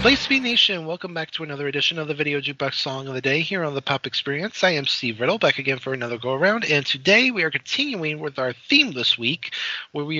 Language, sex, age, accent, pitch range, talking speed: English, male, 30-49, American, 125-175 Hz, 260 wpm